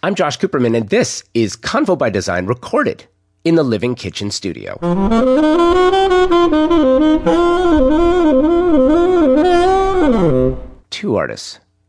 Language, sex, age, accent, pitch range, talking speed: English, male, 30-49, American, 100-135 Hz, 85 wpm